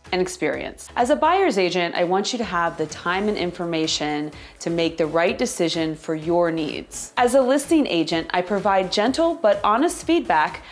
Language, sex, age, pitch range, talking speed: English, female, 30-49, 165-210 Hz, 185 wpm